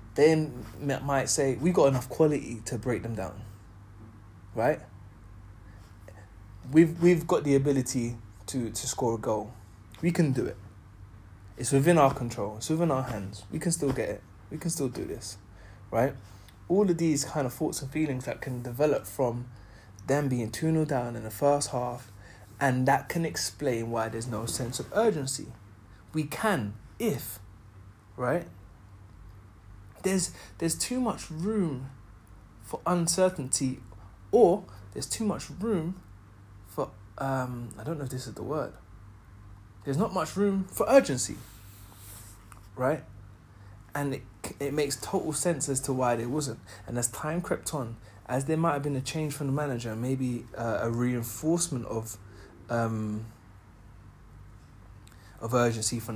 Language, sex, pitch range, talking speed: English, male, 100-145 Hz, 155 wpm